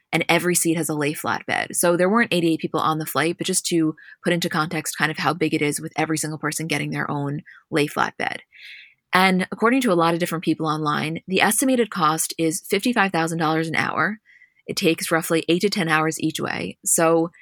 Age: 20-39